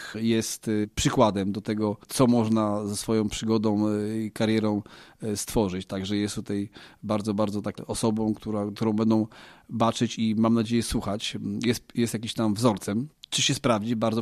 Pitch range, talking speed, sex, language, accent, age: 110-120 Hz, 145 wpm, male, Polish, native, 30-49